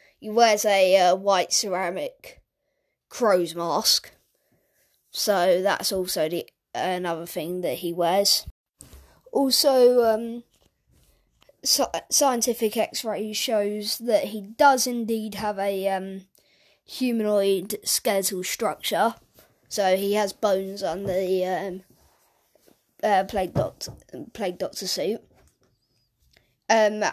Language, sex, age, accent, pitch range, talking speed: English, female, 20-39, British, 185-215 Hz, 105 wpm